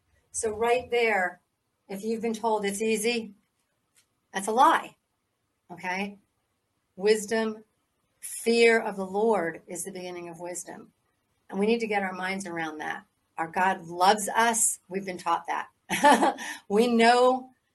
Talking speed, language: 140 wpm, English